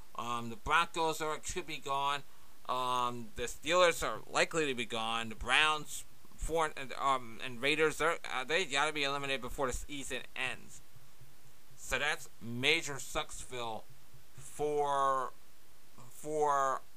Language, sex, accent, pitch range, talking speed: English, male, American, 125-160 Hz, 130 wpm